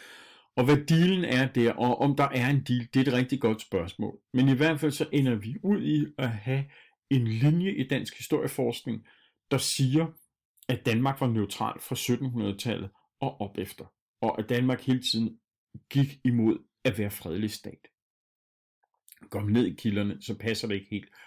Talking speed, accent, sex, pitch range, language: 180 wpm, native, male, 105-130 Hz, Danish